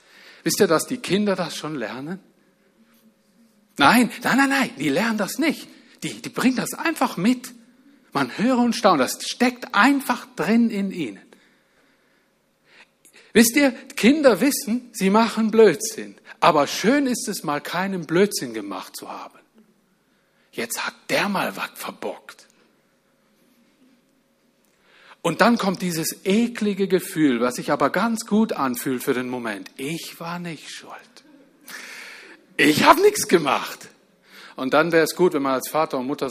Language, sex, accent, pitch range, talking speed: German, male, German, 160-255 Hz, 145 wpm